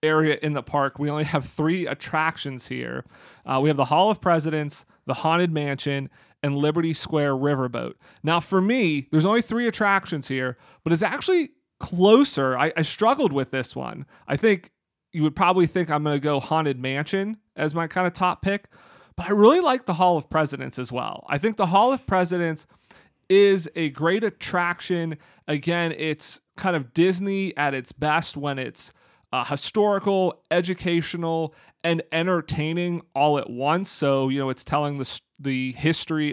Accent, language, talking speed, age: American, English, 175 wpm, 30-49